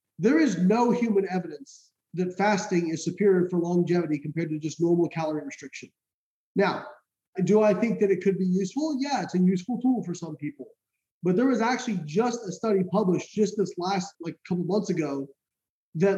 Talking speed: 185 wpm